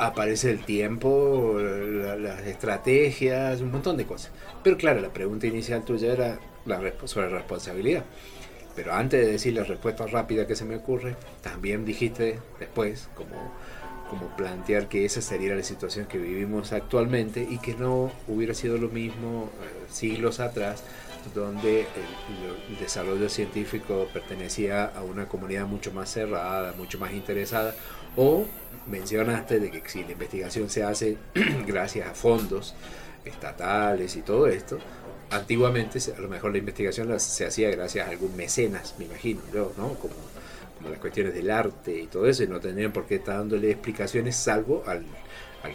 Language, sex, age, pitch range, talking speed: Spanish, male, 40-59, 100-120 Hz, 160 wpm